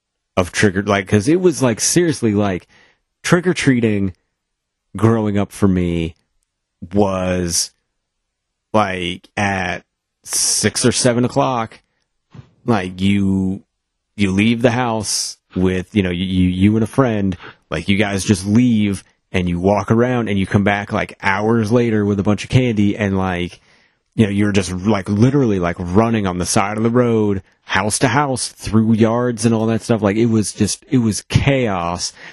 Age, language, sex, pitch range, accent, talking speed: 30-49, English, male, 95-115 Hz, American, 165 wpm